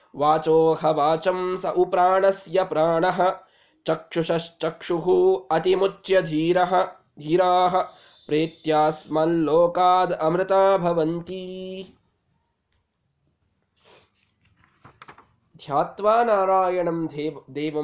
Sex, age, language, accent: male, 20-39, Kannada, native